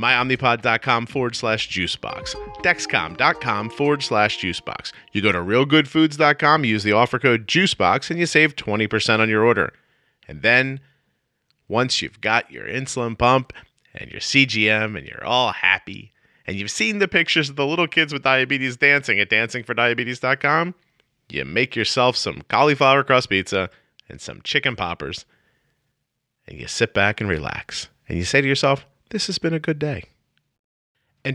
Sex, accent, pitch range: male, American, 95-135 Hz